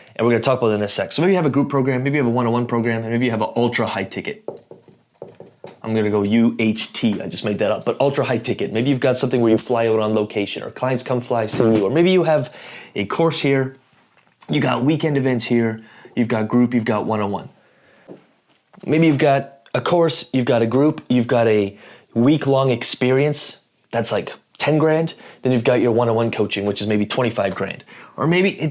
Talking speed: 230 wpm